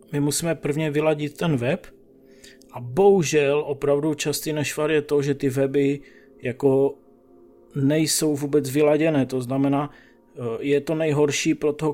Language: Czech